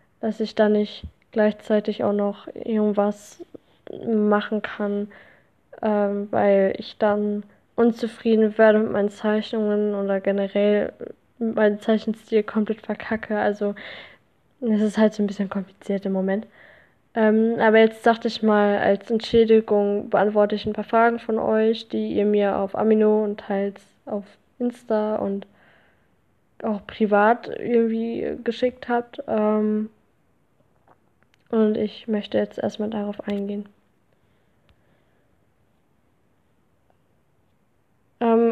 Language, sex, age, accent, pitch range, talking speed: German, female, 10-29, German, 205-225 Hz, 115 wpm